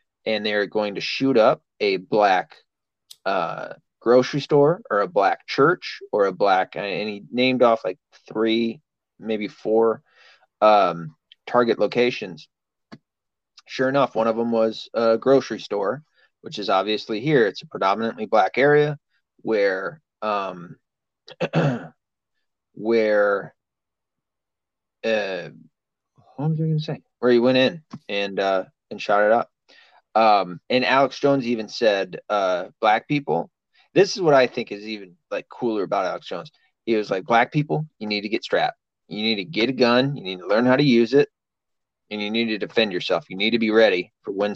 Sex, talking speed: male, 170 wpm